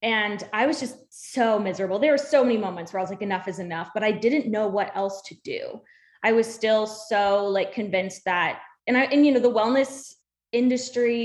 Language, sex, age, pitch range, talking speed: English, female, 10-29, 210-270 Hz, 220 wpm